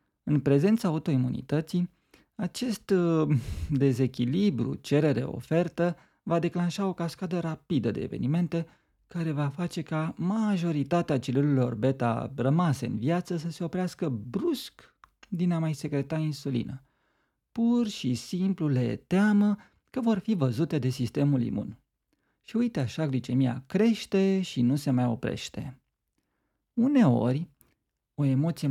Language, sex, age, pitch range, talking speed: Romanian, male, 40-59, 130-195 Hz, 125 wpm